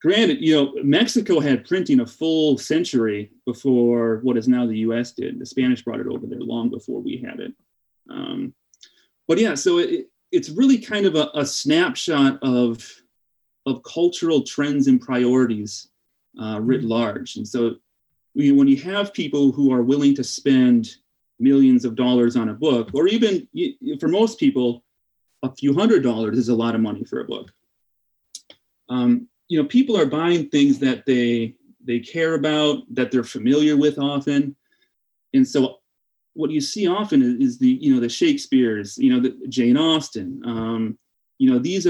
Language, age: English, 30-49